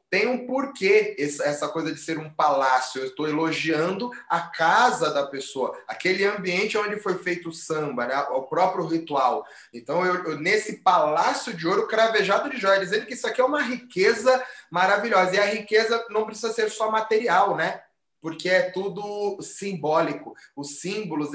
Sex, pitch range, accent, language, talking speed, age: male, 170-220 Hz, Brazilian, Portuguese, 170 wpm, 20-39